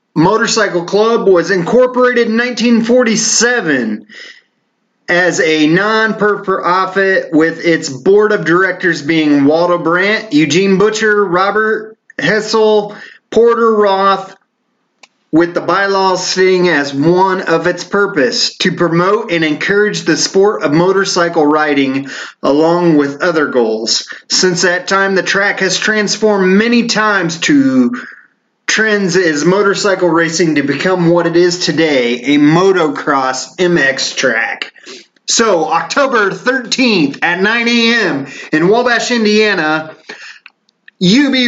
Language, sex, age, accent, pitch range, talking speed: English, male, 30-49, American, 170-220 Hz, 115 wpm